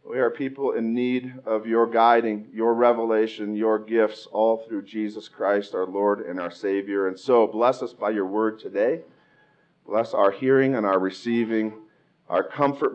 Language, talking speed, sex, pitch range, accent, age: English, 170 wpm, male, 110-175 Hz, American, 40-59